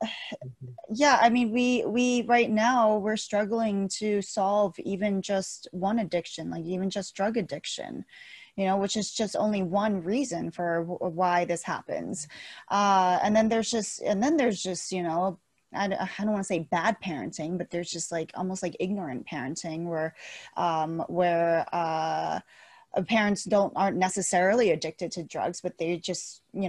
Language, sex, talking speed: English, female, 170 wpm